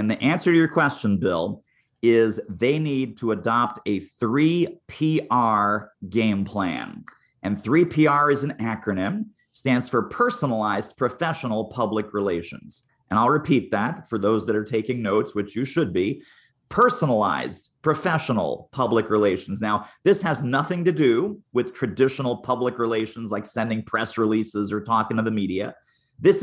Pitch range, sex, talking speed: 110-145 Hz, male, 150 wpm